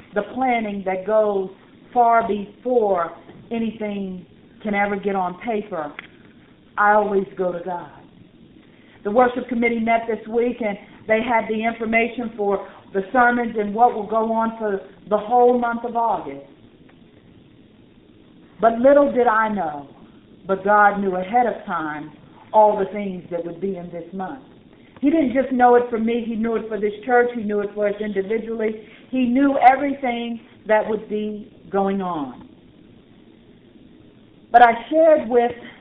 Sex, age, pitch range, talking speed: female, 50-69, 205-245 Hz, 155 wpm